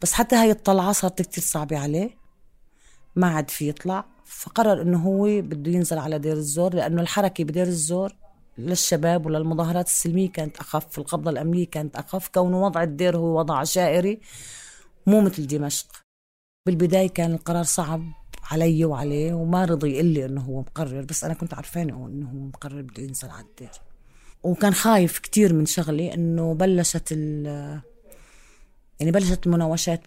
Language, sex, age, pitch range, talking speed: Arabic, female, 30-49, 150-180 Hz, 155 wpm